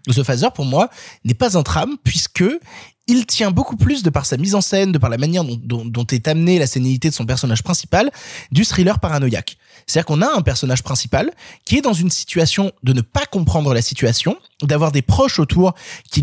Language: French